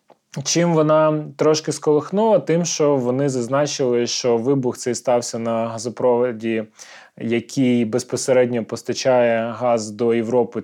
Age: 20-39